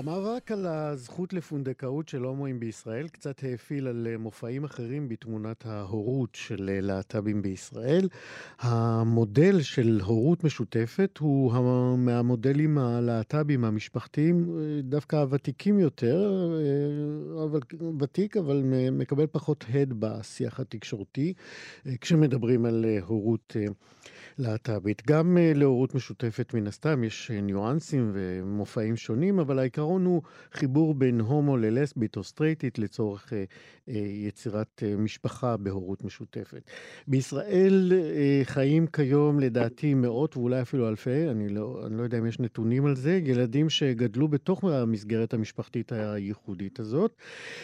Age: 50-69